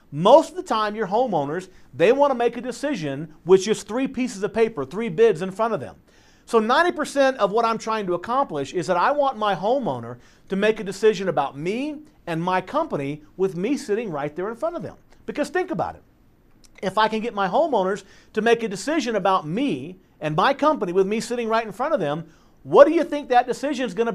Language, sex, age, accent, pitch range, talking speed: English, male, 50-69, American, 185-275 Hz, 230 wpm